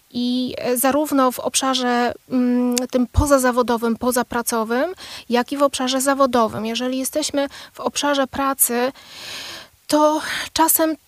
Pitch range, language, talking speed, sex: 240-270 Hz, Polish, 105 wpm, female